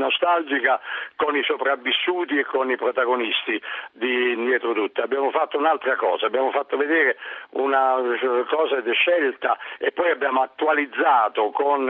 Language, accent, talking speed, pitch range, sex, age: Italian, native, 135 wpm, 135-180 Hz, male, 60-79